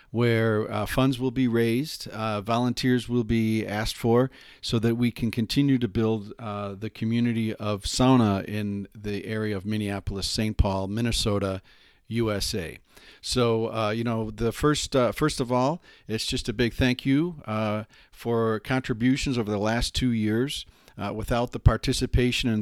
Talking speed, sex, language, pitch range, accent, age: 165 wpm, male, English, 105-125 Hz, American, 40-59